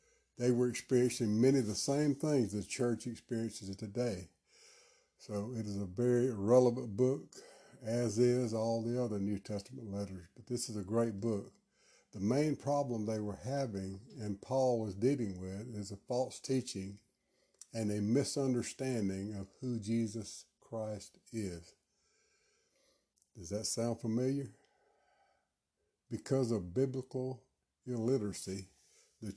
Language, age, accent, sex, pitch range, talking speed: English, 60-79, American, male, 100-125 Hz, 135 wpm